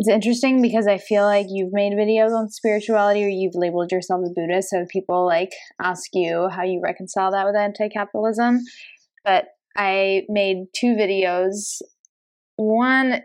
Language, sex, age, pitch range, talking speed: English, female, 10-29, 185-210 Hz, 160 wpm